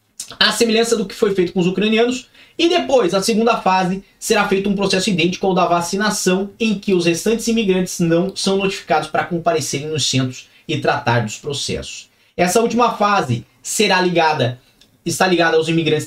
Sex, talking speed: male, 175 wpm